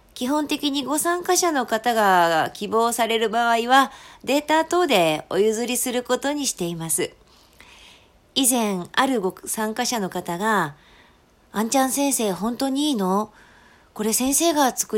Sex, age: female, 40-59